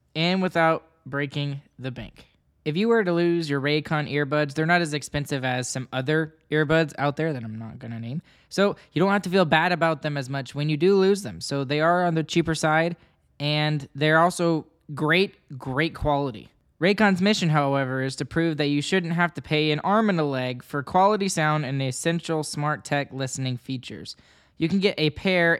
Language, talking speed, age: English, 205 wpm, 10-29